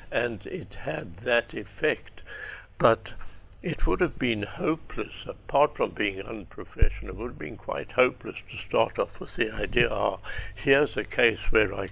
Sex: male